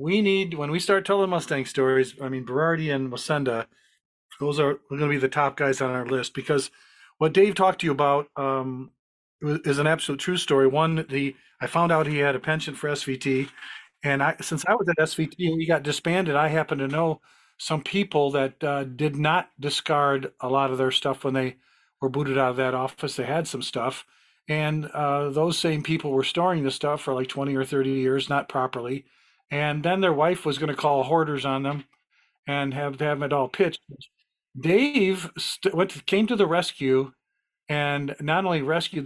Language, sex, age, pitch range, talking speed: English, male, 50-69, 135-155 Hz, 205 wpm